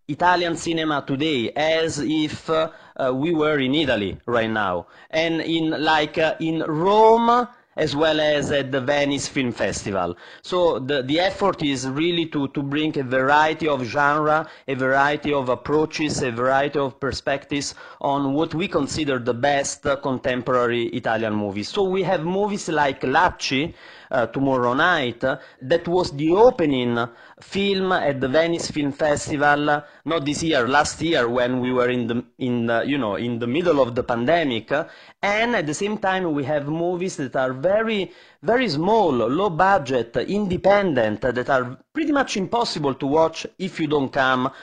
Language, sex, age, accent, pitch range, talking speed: English, male, 30-49, Italian, 130-165 Hz, 170 wpm